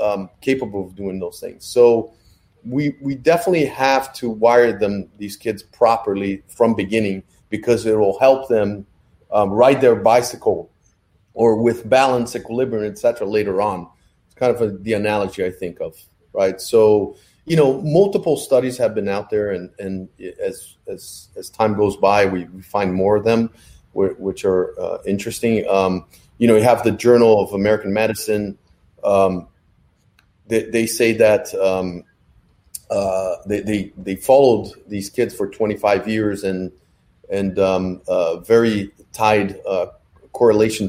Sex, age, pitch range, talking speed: male, 30-49, 95-120 Hz, 155 wpm